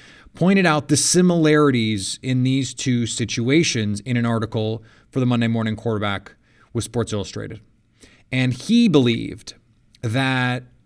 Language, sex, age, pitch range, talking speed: English, male, 30-49, 115-155 Hz, 125 wpm